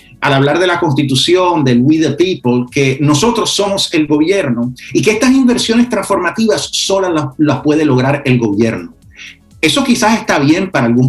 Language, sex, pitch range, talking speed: English, male, 135-180 Hz, 175 wpm